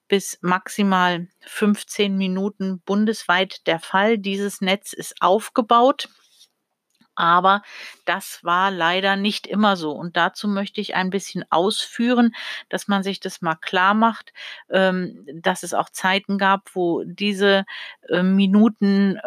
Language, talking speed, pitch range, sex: German, 125 wpm, 185-210 Hz, female